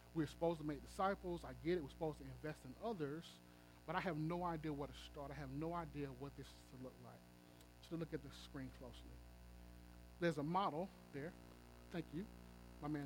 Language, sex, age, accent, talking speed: English, male, 30-49, American, 210 wpm